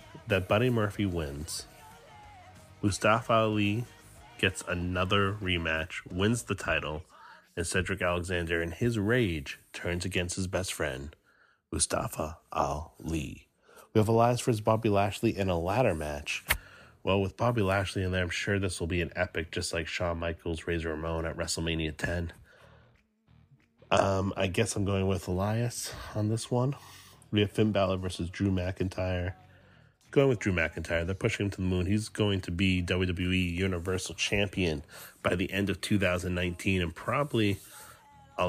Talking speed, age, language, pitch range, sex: 155 wpm, 30-49, English, 85-105 Hz, male